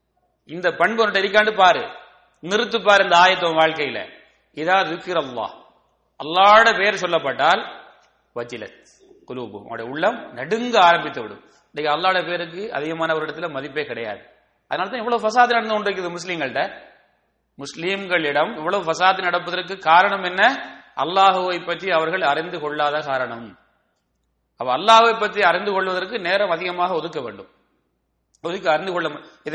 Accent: Indian